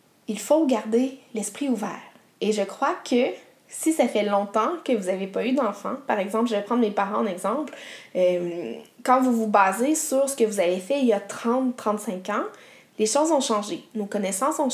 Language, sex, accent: French, female, Canadian